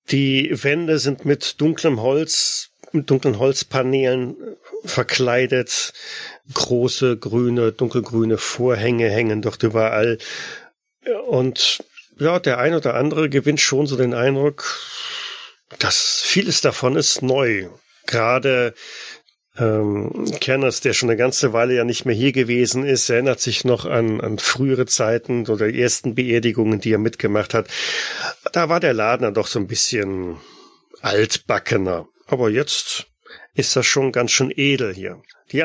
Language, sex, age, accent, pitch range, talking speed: German, male, 40-59, German, 110-130 Hz, 140 wpm